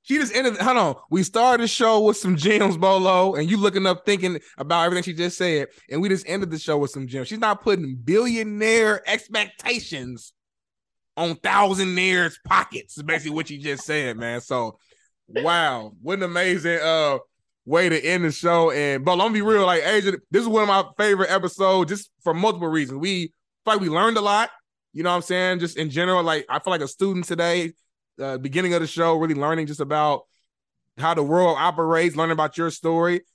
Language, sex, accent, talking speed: English, male, American, 205 wpm